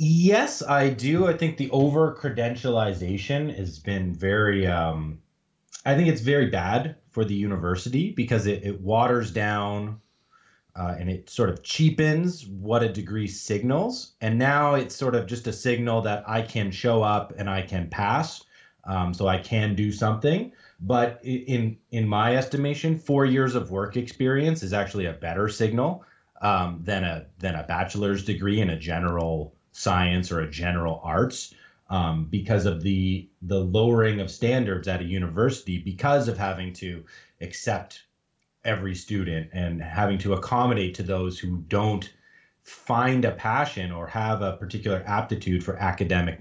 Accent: American